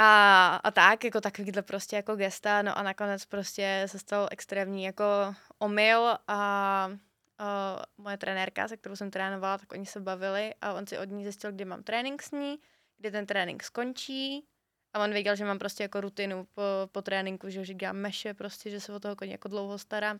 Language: Czech